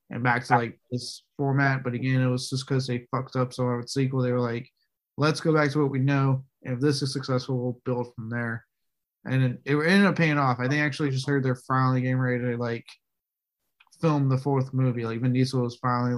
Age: 20-39